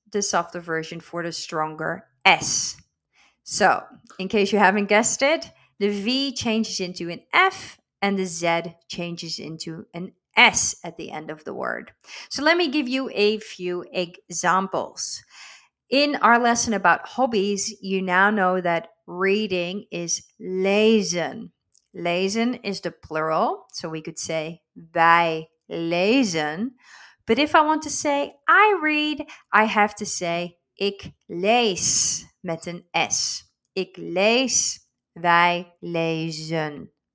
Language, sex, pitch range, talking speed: Dutch, female, 170-225 Hz, 135 wpm